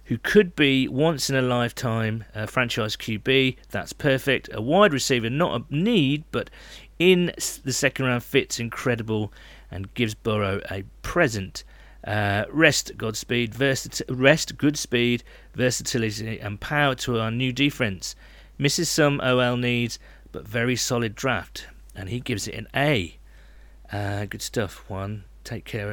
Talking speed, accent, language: 140 wpm, British, English